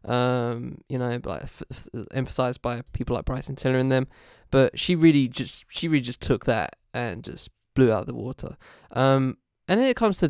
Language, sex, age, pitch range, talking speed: English, male, 10-29, 125-140 Hz, 210 wpm